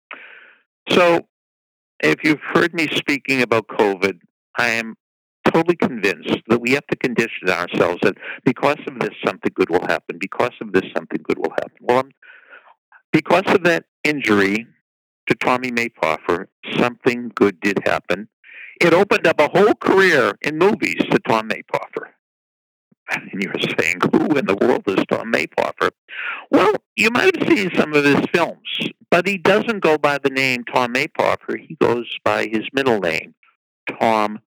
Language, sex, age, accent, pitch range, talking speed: English, male, 60-79, American, 110-165 Hz, 155 wpm